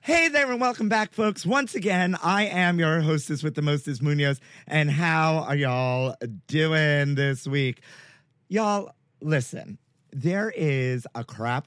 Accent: American